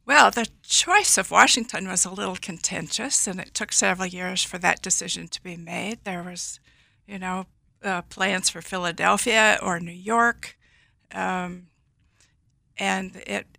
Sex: female